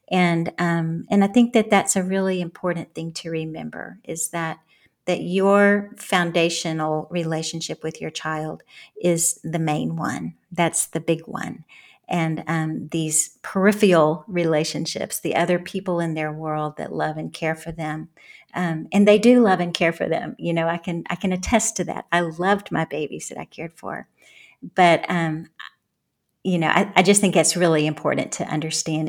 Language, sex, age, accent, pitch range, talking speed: English, female, 50-69, American, 160-180 Hz, 180 wpm